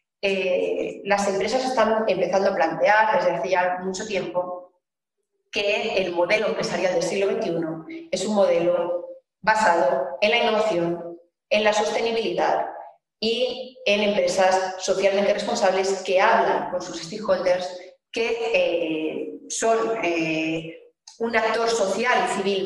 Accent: Spanish